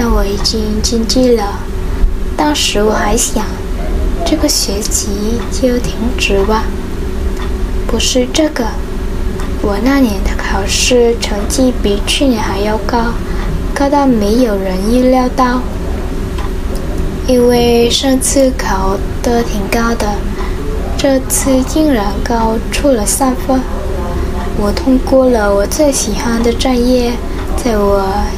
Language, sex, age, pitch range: Vietnamese, female, 10-29, 215-260 Hz